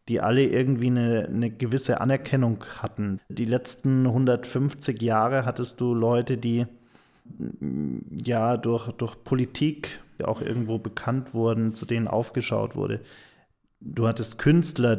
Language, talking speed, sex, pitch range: German, 125 wpm, male, 115-130 Hz